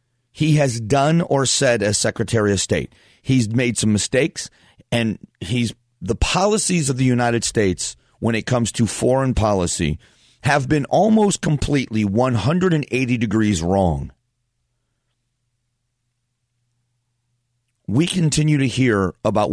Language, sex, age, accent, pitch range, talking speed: English, male, 40-59, American, 110-130 Hz, 120 wpm